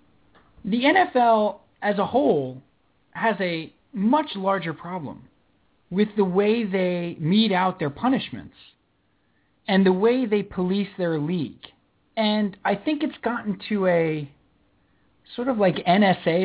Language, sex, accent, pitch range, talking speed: English, male, American, 155-215 Hz, 130 wpm